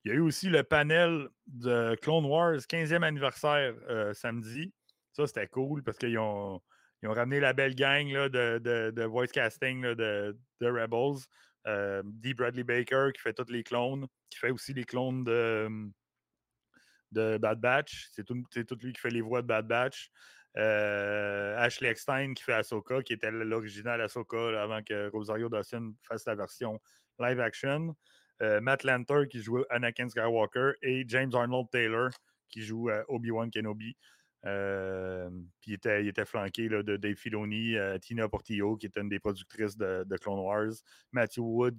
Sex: male